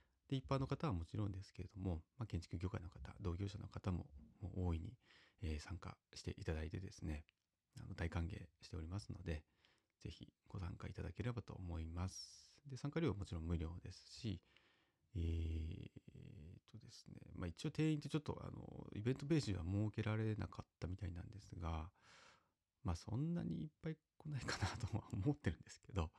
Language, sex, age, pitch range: Japanese, male, 30-49, 85-115 Hz